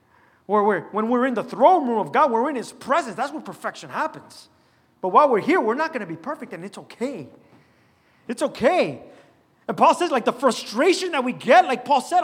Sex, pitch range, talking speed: male, 235-315 Hz, 220 wpm